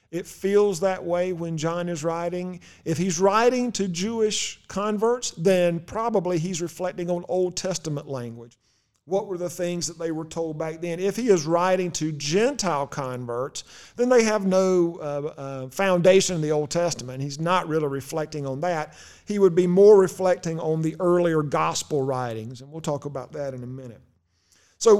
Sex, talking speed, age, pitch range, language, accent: male, 180 wpm, 50-69, 150-195 Hz, English, American